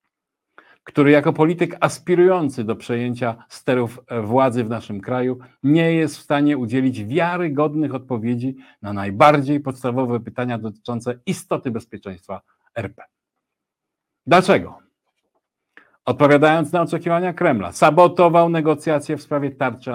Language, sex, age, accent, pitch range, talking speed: Polish, male, 50-69, native, 125-155 Hz, 110 wpm